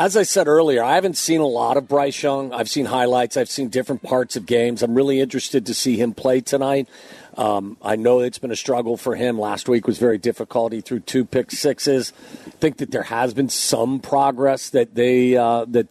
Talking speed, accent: 225 wpm, American